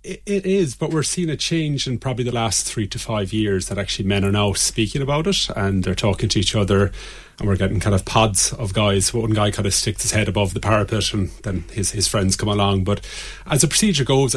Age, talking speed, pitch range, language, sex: 30-49, 245 wpm, 95-115 Hz, English, male